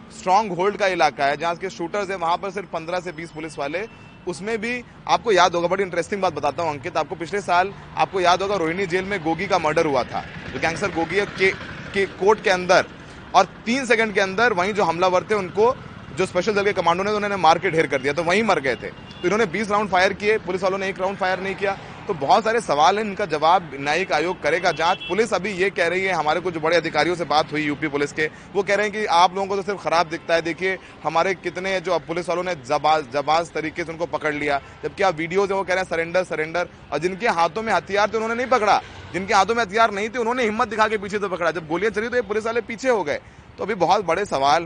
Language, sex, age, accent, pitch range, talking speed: Hindi, male, 30-49, native, 160-200 Hz, 260 wpm